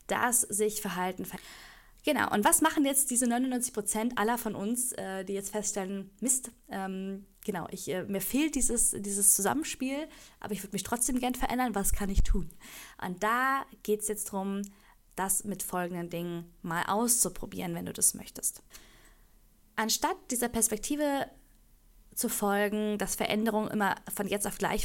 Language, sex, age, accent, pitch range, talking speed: German, female, 10-29, German, 195-240 Hz, 165 wpm